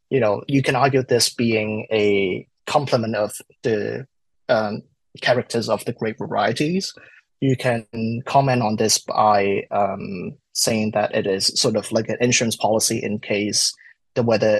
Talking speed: 155 wpm